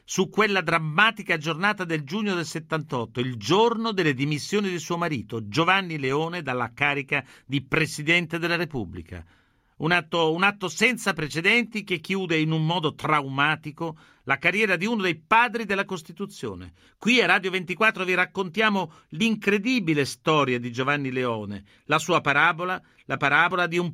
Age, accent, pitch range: 50-69, native, 145-190 Hz